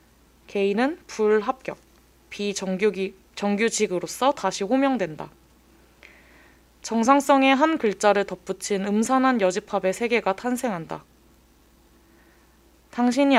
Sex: female